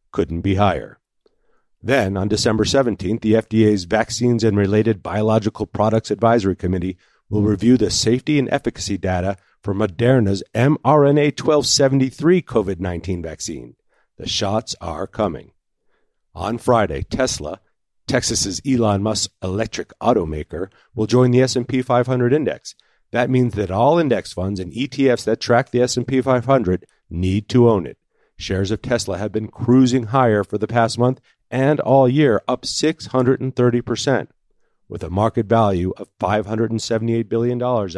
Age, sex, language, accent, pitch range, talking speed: 50-69, male, English, American, 100-125 Hz, 140 wpm